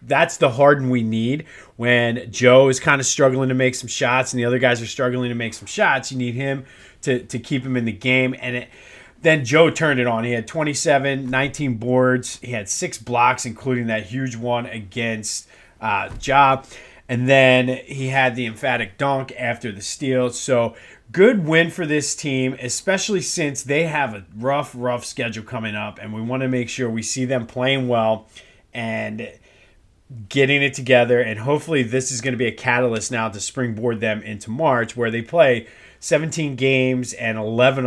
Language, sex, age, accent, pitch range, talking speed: English, male, 30-49, American, 115-130 Hz, 190 wpm